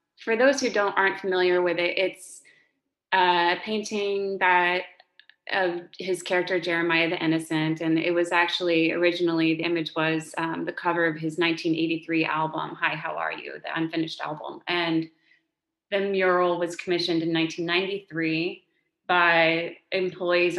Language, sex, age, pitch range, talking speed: English, female, 20-39, 165-180 Hz, 145 wpm